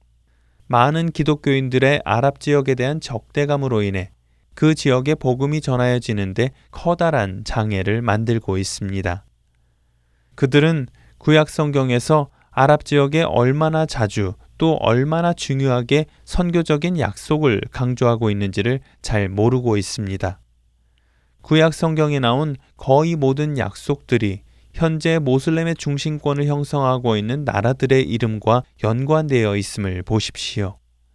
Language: Korean